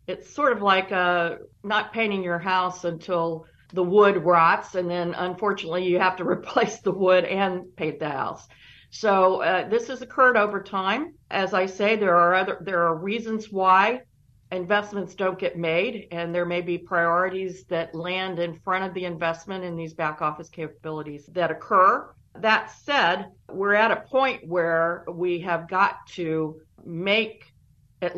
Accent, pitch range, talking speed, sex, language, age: American, 160-190 Hz, 170 wpm, female, English, 50-69